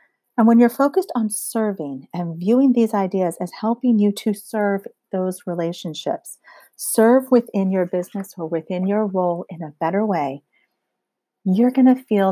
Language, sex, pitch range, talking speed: English, female, 180-235 Hz, 160 wpm